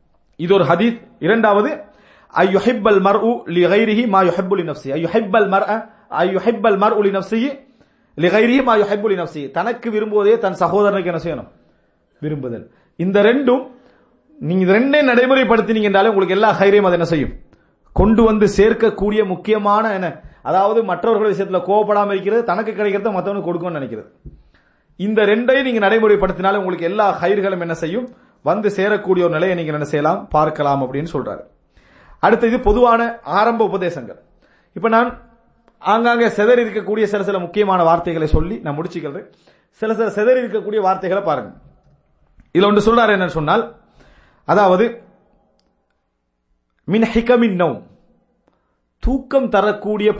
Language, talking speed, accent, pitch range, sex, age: English, 85 wpm, Indian, 175-225 Hz, male, 40-59